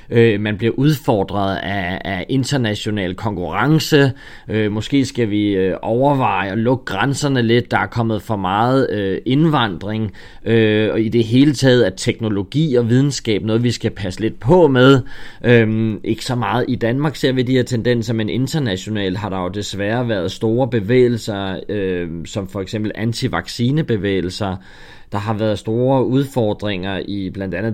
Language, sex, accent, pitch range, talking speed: Danish, male, native, 100-125 Hz, 145 wpm